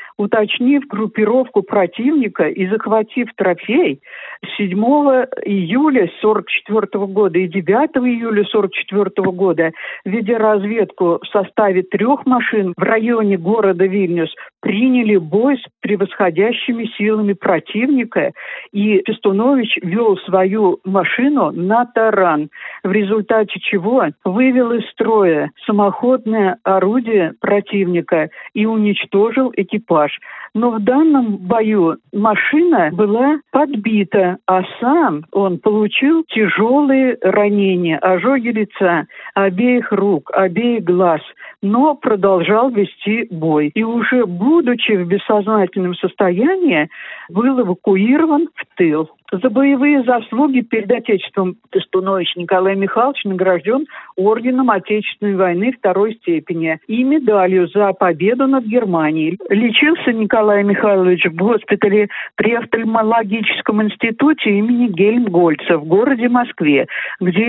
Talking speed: 105 wpm